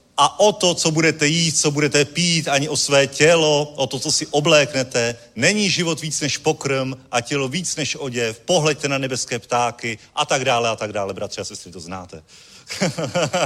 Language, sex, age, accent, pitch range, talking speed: Czech, male, 40-59, native, 125-160 Hz, 185 wpm